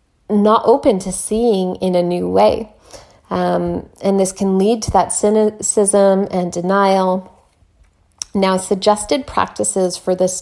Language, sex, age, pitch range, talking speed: English, female, 30-49, 180-215 Hz, 130 wpm